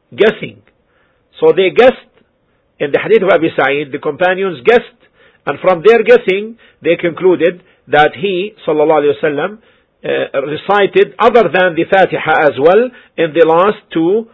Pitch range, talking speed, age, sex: 155-260 Hz, 140 wpm, 50-69, male